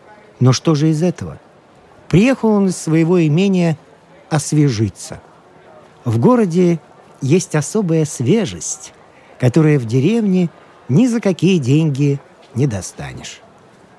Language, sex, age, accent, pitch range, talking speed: Russian, male, 50-69, native, 150-200 Hz, 105 wpm